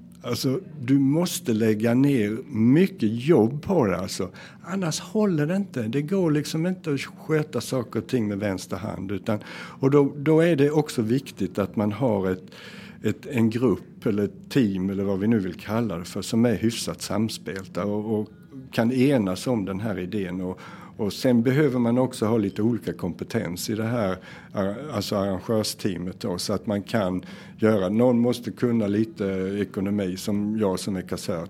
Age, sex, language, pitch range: 60-79, male, Swedish, 95-125 Hz